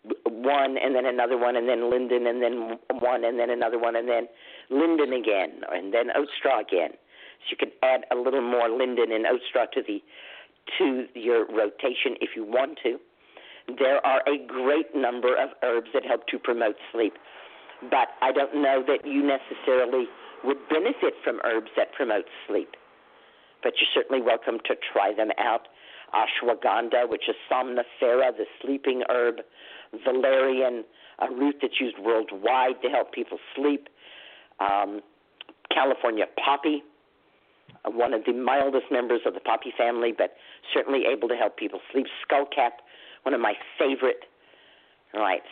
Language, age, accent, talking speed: English, 50-69, American, 155 wpm